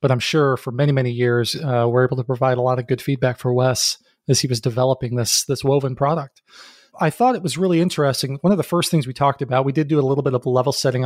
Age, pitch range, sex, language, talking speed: 30-49, 130-150 Hz, male, English, 270 wpm